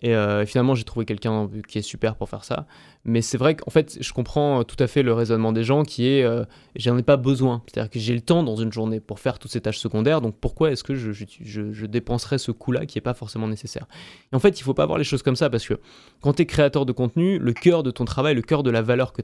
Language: French